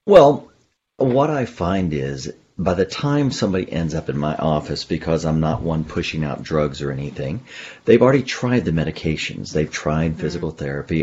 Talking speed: 175 wpm